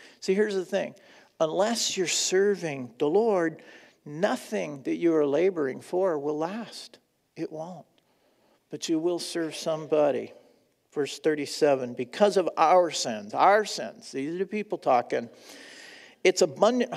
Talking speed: 140 wpm